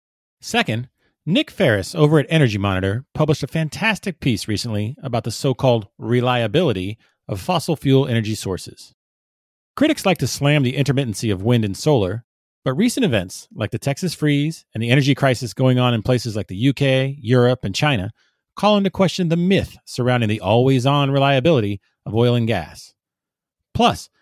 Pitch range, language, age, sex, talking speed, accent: 115-155 Hz, English, 40-59, male, 165 wpm, American